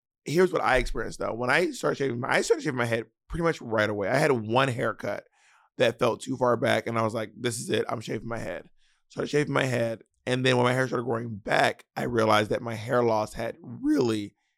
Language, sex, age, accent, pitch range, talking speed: English, male, 20-39, American, 110-130 Hz, 245 wpm